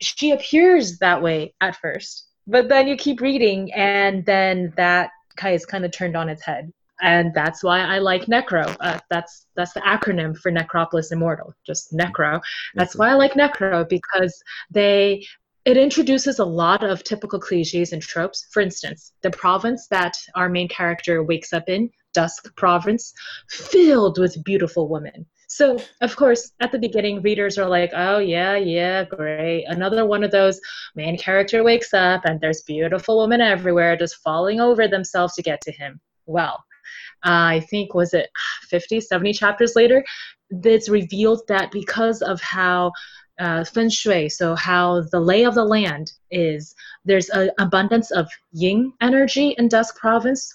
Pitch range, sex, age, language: 175-220 Hz, female, 20-39, English